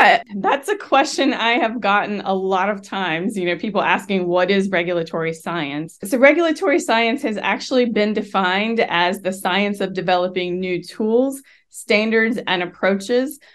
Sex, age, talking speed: female, 20-39, 155 wpm